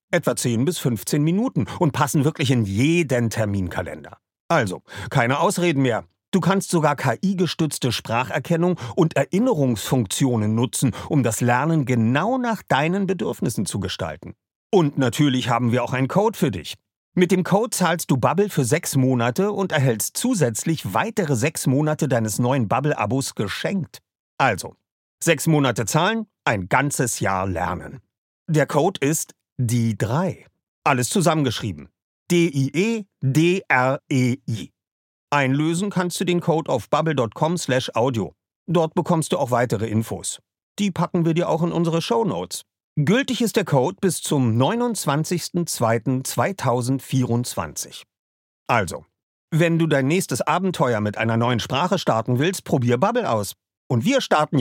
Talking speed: 135 wpm